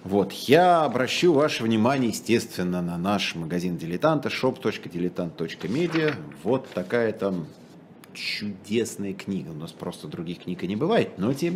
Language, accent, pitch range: Russian, native, 85-125 Hz